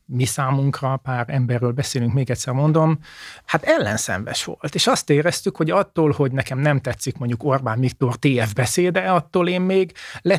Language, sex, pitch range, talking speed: Hungarian, male, 125-145 Hz, 165 wpm